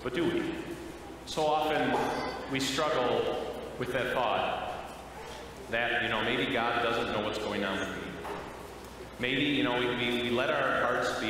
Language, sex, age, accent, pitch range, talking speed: English, male, 30-49, American, 115-140 Hz, 165 wpm